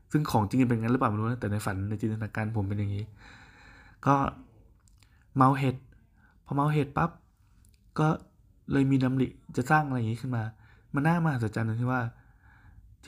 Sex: male